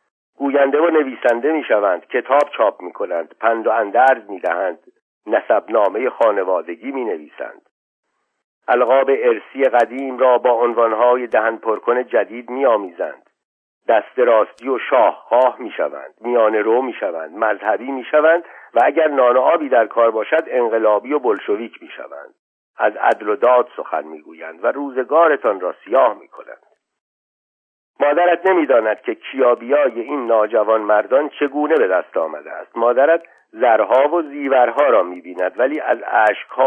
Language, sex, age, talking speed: Persian, male, 50-69, 140 wpm